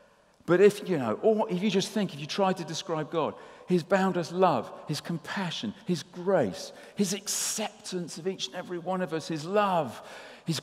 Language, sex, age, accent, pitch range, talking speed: English, male, 50-69, British, 140-195 Hz, 190 wpm